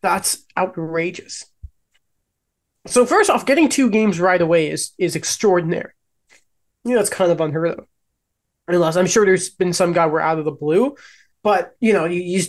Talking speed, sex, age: 185 wpm, male, 20-39